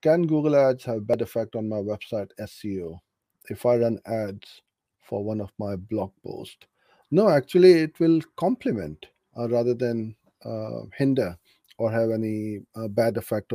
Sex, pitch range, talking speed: male, 105-125 Hz, 160 wpm